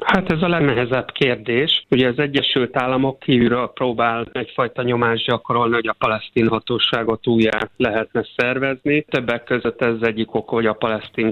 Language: Hungarian